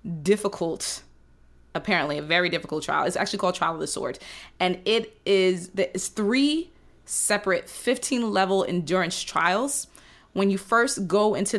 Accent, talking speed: American, 140 wpm